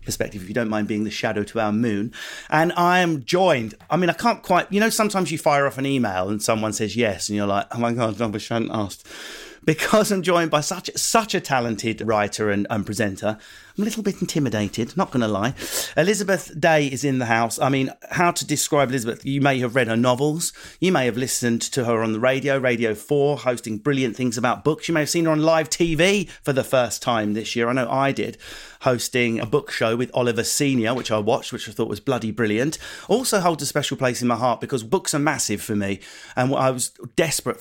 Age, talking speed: 40-59, 235 wpm